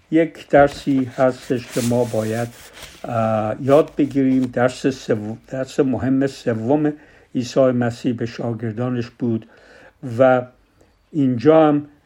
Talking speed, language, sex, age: 105 wpm, Persian, male, 60-79